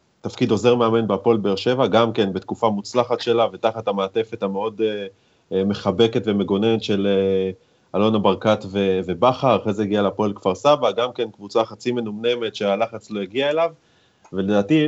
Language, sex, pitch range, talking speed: Hebrew, male, 100-120 Hz, 145 wpm